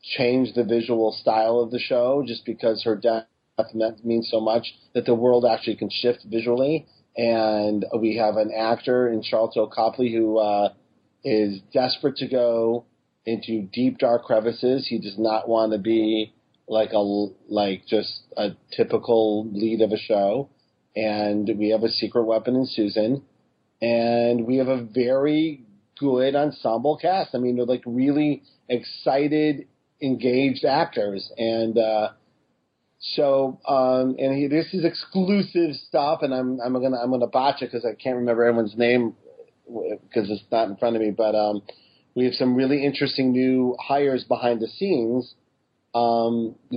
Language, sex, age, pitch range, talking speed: English, male, 40-59, 110-130 Hz, 160 wpm